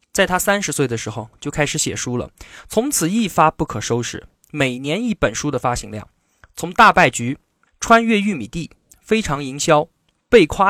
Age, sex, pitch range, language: 20-39, male, 130-200 Hz, Chinese